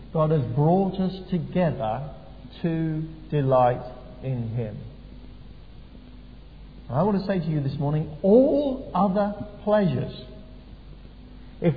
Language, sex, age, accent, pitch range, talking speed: English, male, 50-69, British, 130-200 Hz, 105 wpm